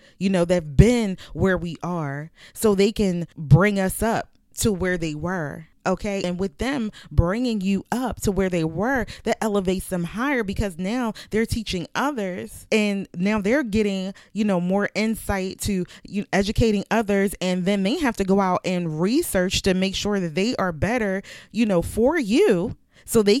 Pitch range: 175-225 Hz